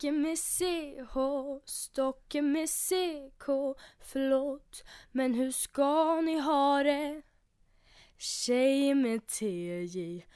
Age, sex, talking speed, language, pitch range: 10-29, female, 85 wpm, Swedish, 255-320 Hz